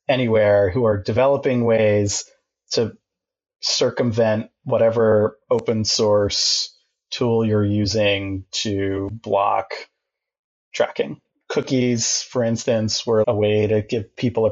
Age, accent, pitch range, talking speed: 30-49, American, 105-125 Hz, 110 wpm